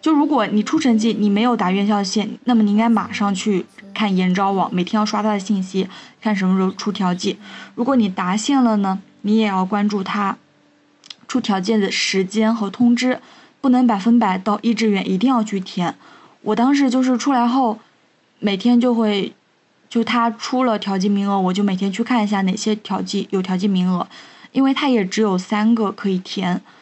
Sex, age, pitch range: female, 20-39, 195-230 Hz